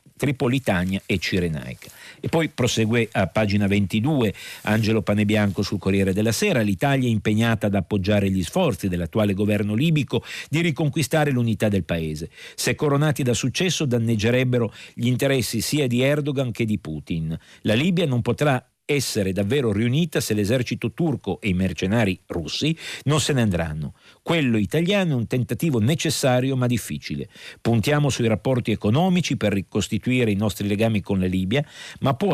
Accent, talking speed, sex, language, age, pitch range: native, 155 wpm, male, Italian, 50-69, 105-135 Hz